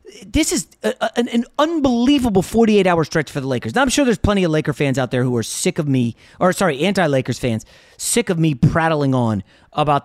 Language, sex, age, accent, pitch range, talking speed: English, male, 30-49, American, 115-160 Hz, 210 wpm